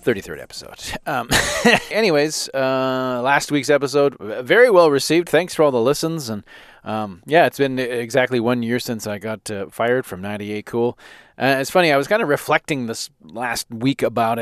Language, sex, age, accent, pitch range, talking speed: English, male, 30-49, American, 115-155 Hz, 185 wpm